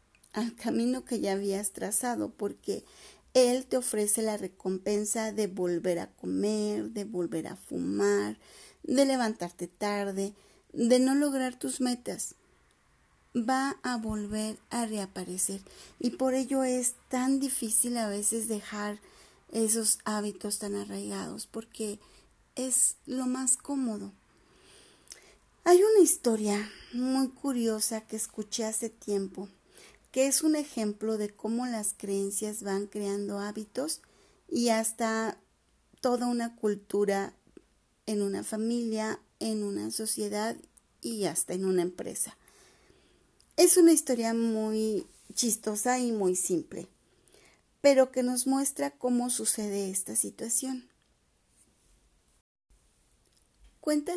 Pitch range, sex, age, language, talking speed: 200-250 Hz, female, 40-59, Spanish, 115 wpm